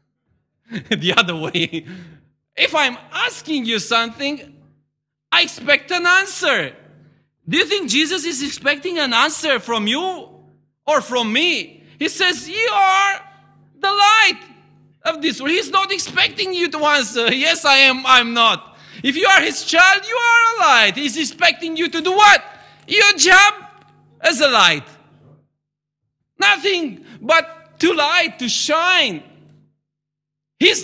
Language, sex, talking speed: English, male, 140 wpm